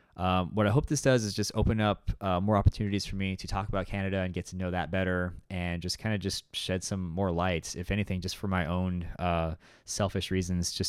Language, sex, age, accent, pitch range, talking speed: English, male, 20-39, American, 85-95 Hz, 240 wpm